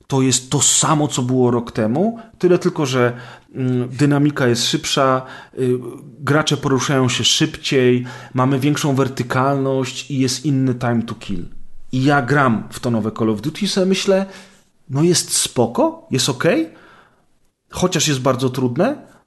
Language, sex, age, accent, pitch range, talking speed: Polish, male, 30-49, native, 120-155 Hz, 155 wpm